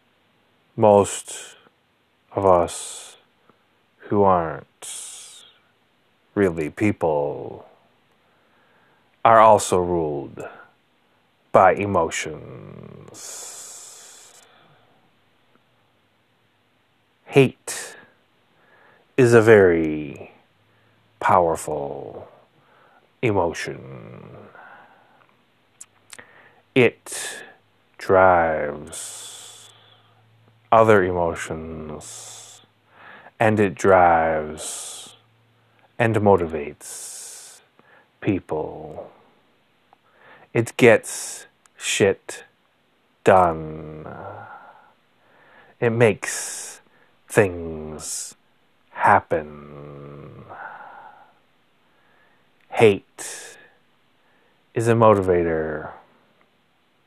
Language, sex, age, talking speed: English, male, 40-59, 40 wpm